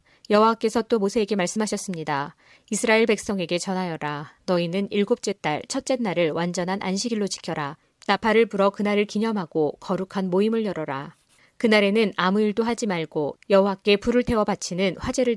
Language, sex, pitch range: Korean, female, 175-215 Hz